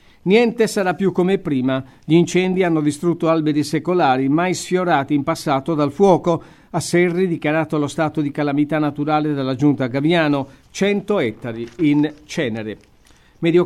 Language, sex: Italian, male